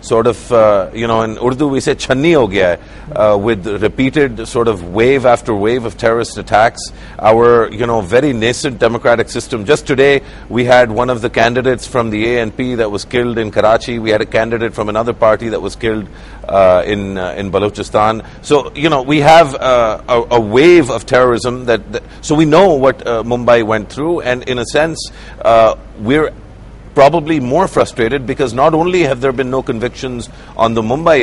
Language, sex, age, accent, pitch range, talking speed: English, male, 50-69, Indian, 110-135 Hz, 195 wpm